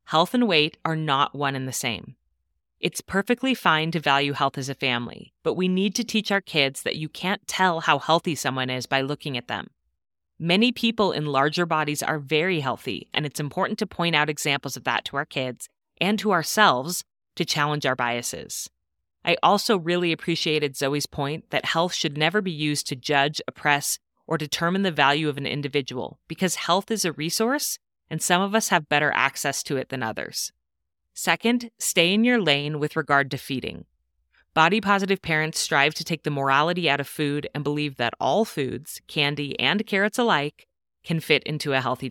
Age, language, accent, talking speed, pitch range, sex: 30-49, English, American, 190 wpm, 140-175 Hz, female